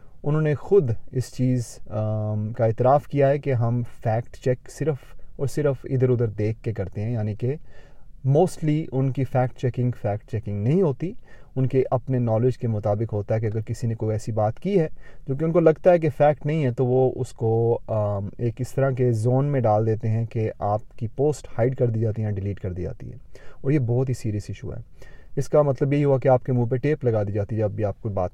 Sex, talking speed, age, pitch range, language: male, 245 wpm, 30-49, 115-145 Hz, Urdu